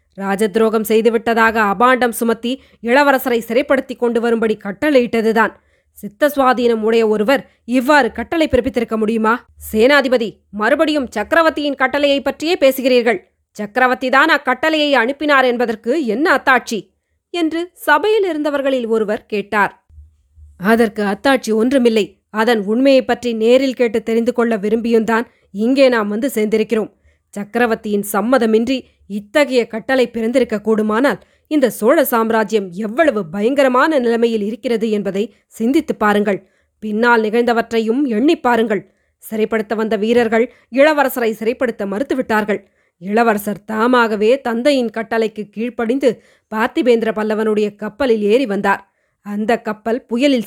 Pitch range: 215-260 Hz